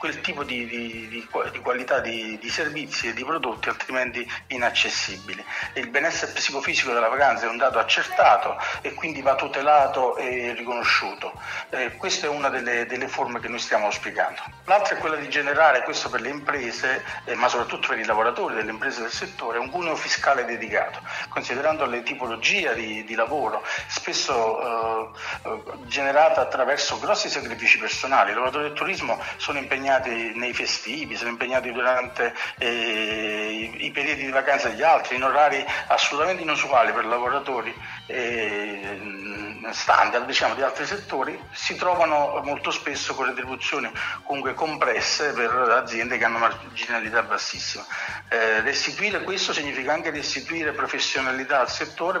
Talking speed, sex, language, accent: 150 wpm, male, Italian, native